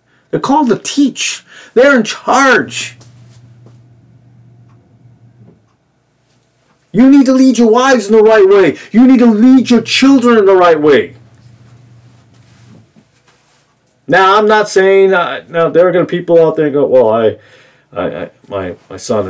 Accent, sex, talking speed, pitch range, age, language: American, male, 145 wpm, 115-195 Hz, 40-59, English